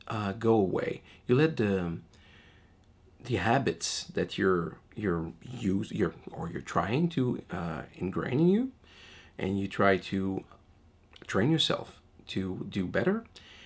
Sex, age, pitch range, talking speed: male, 40-59, 90-115 Hz, 130 wpm